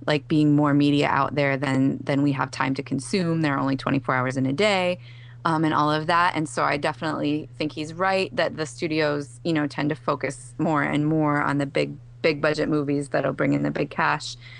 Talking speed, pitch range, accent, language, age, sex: 230 wpm, 140-165 Hz, American, English, 20-39, female